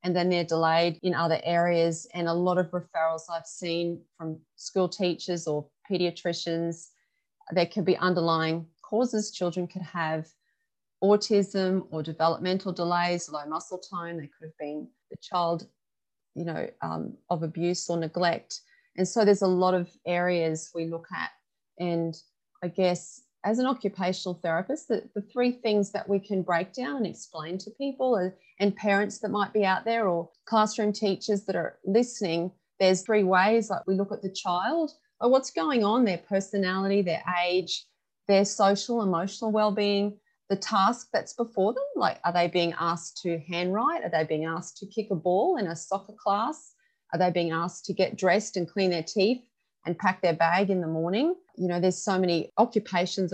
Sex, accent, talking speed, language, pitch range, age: female, Australian, 180 wpm, English, 170-210 Hz, 30-49